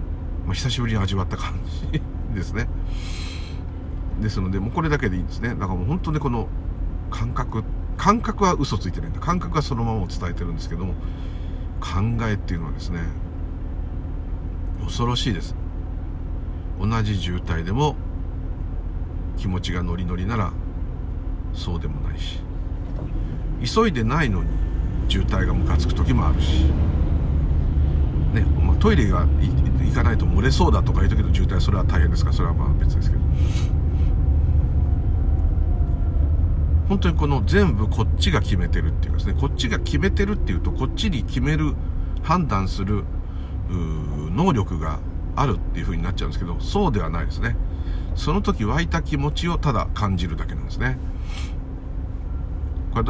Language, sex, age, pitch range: Japanese, male, 50-69, 80-95 Hz